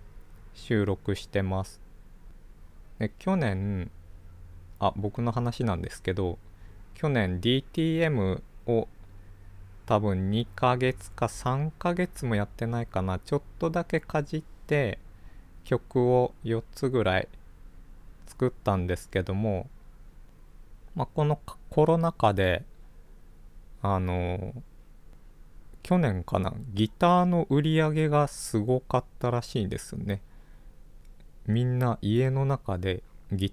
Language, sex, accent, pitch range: Japanese, male, native, 90-120 Hz